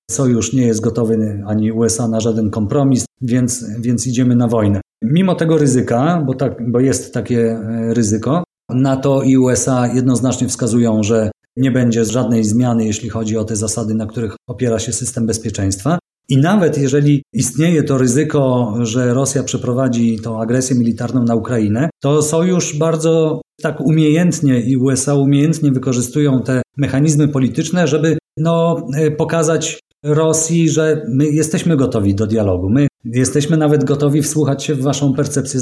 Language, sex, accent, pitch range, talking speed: Polish, male, native, 125-145 Hz, 150 wpm